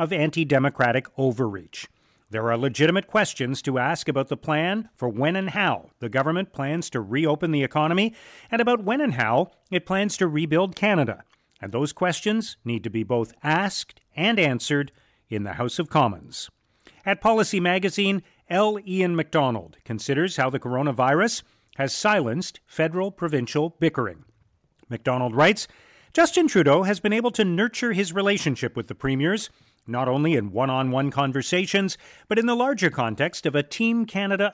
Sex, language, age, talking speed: male, English, 40-59, 160 wpm